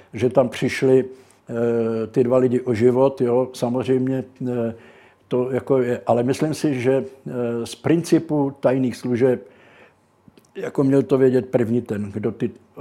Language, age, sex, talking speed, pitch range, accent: Czech, 60-79, male, 155 wpm, 120-140 Hz, native